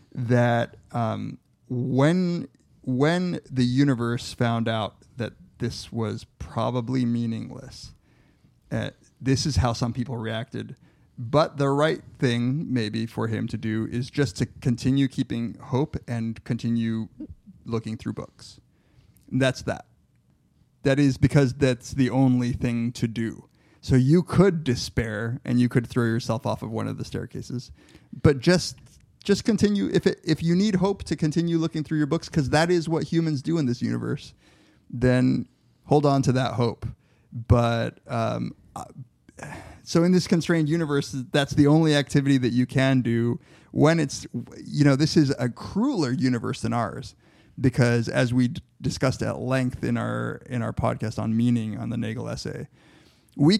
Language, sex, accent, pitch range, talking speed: English, male, American, 115-145 Hz, 160 wpm